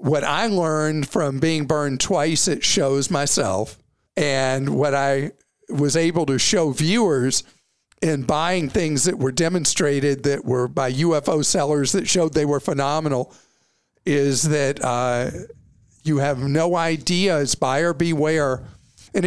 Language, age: English, 50-69